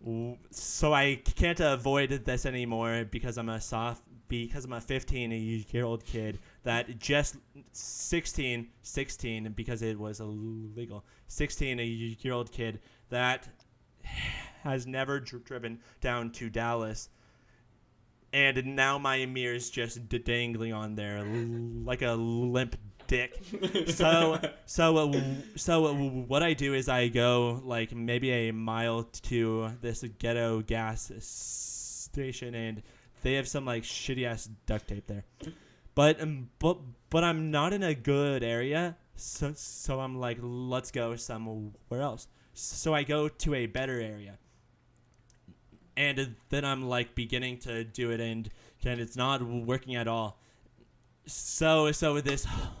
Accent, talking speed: American, 135 wpm